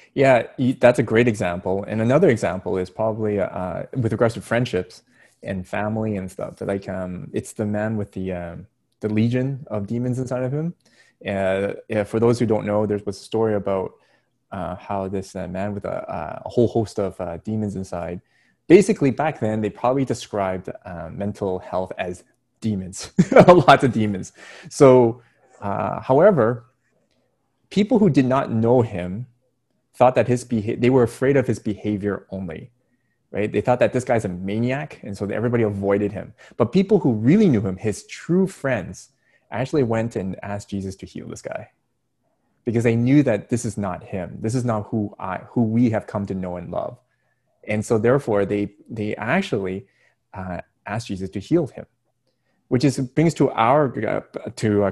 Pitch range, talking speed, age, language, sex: 100-125 Hz, 180 wpm, 20-39, English, male